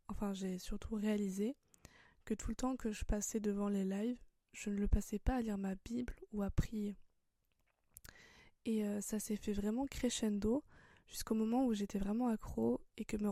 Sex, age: female, 20-39